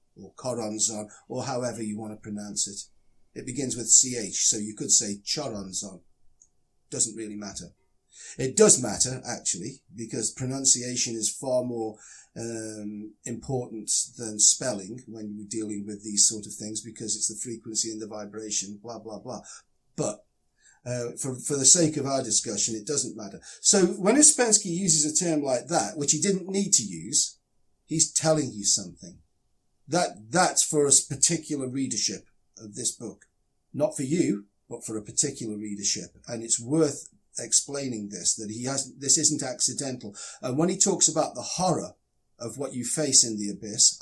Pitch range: 110-150 Hz